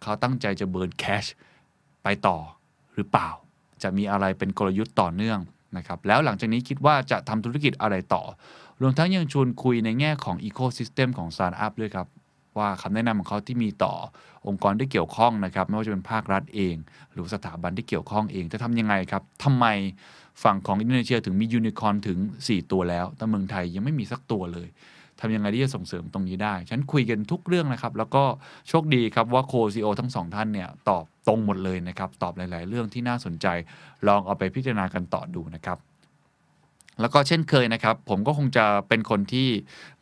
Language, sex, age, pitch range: Thai, male, 20-39, 95-125 Hz